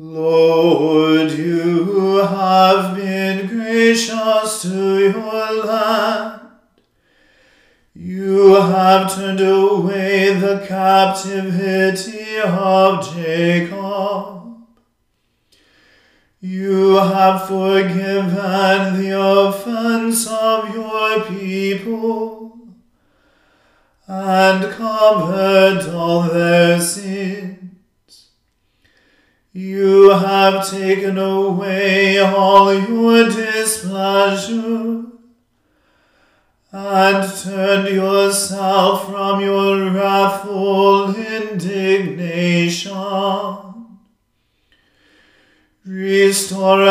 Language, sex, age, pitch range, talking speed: English, male, 40-59, 190-210 Hz, 55 wpm